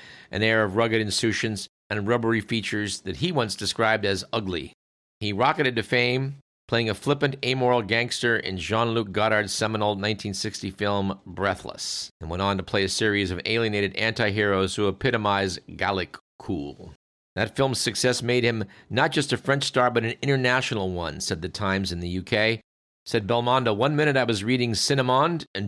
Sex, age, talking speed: male, 50-69, 170 wpm